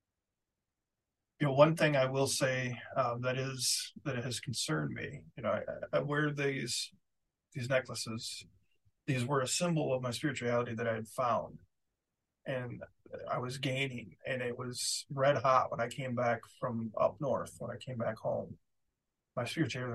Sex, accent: male, American